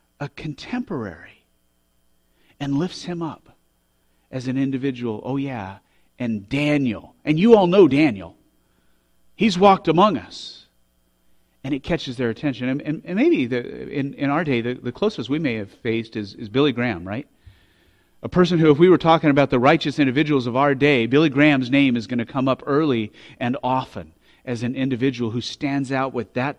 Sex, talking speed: male, 180 wpm